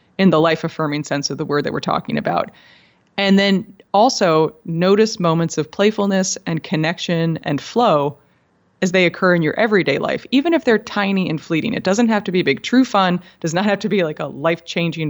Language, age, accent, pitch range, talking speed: English, 30-49, American, 155-200 Hz, 205 wpm